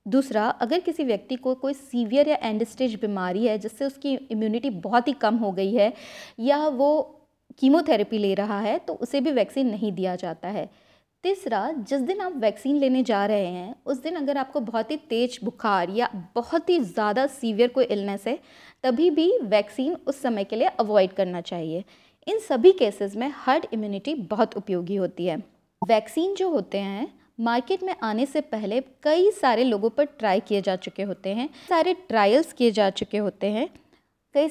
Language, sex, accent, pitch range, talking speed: Hindi, female, native, 205-290 Hz, 185 wpm